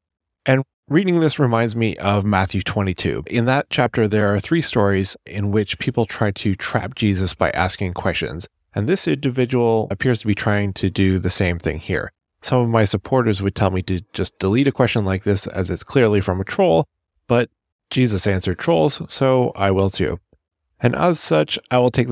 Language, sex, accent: English, male, American